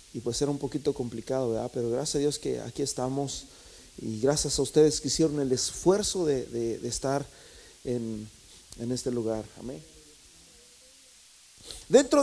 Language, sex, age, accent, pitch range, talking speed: Spanish, male, 40-59, Mexican, 130-185 Hz, 150 wpm